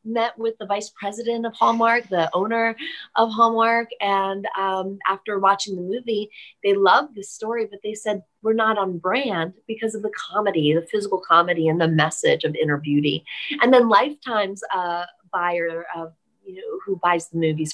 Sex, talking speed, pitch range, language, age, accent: female, 180 wpm, 170-235 Hz, English, 30-49, American